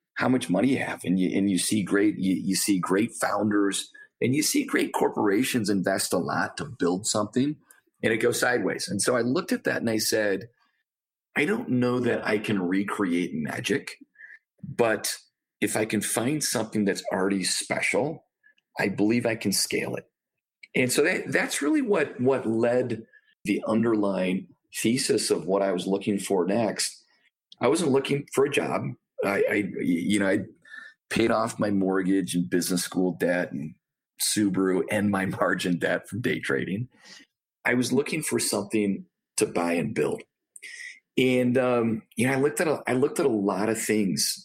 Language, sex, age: English, male, 40-59